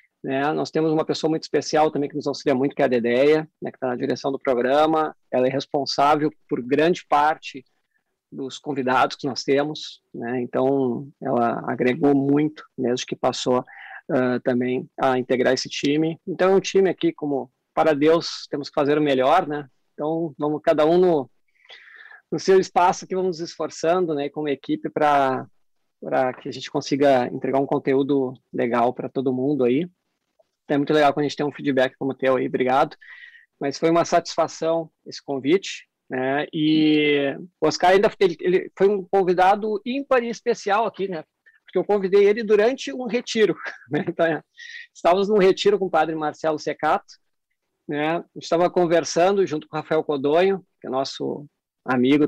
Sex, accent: male, Brazilian